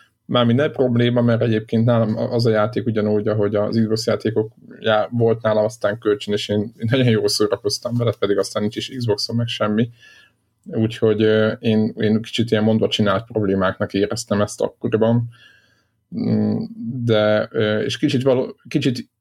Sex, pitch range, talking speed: male, 105-120 Hz, 155 wpm